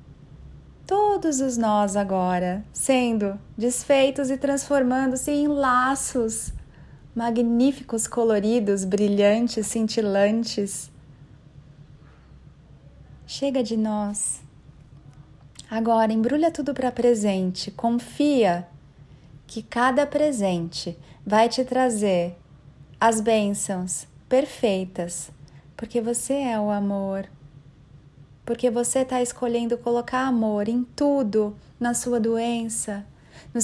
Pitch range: 150-240 Hz